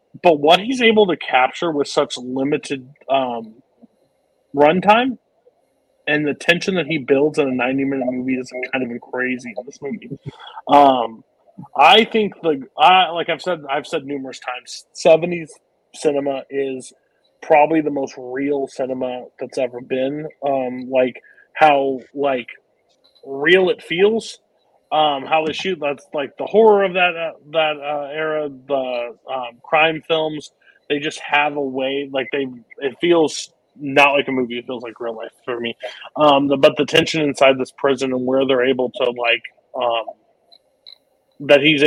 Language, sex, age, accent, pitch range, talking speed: English, male, 30-49, American, 130-155 Hz, 160 wpm